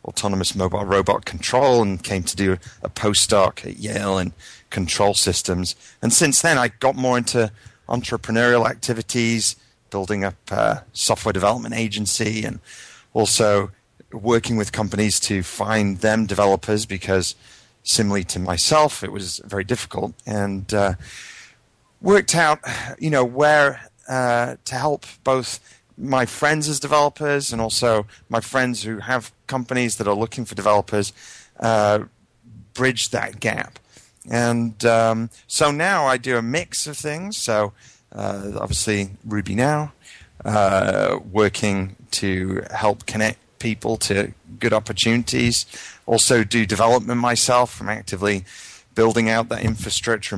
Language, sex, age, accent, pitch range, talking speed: English, male, 30-49, British, 100-125 Hz, 135 wpm